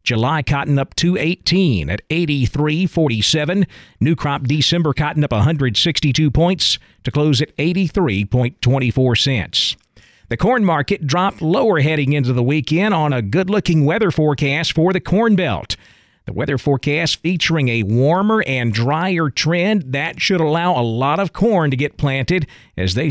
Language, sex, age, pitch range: English, male, 50-69, 130-165 Hz